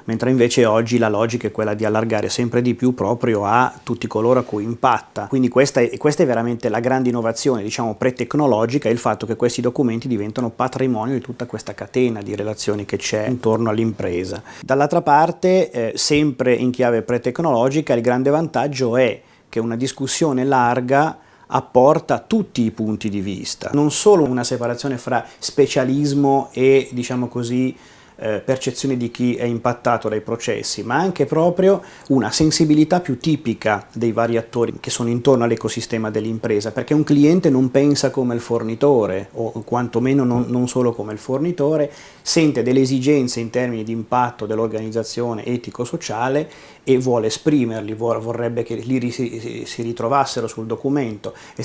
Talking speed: 155 wpm